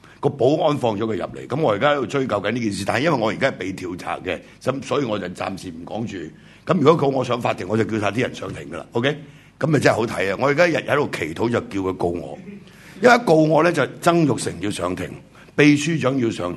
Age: 60-79